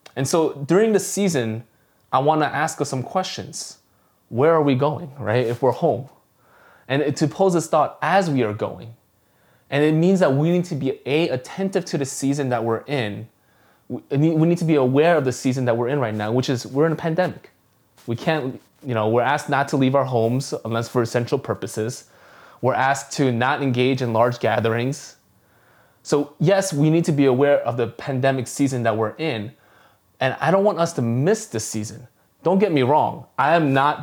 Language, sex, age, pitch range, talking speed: English, male, 20-39, 115-145 Hz, 205 wpm